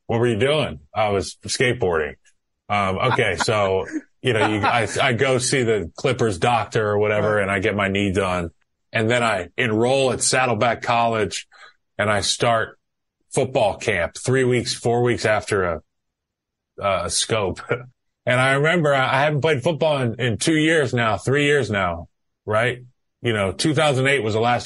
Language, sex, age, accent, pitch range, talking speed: English, male, 20-39, American, 105-130 Hz, 170 wpm